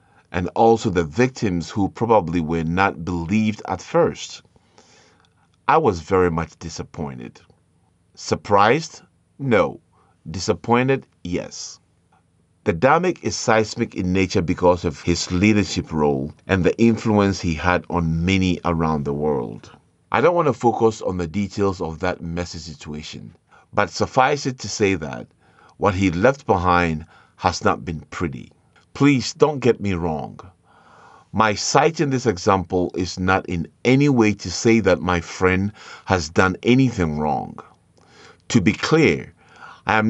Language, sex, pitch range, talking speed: English, male, 85-110 Hz, 145 wpm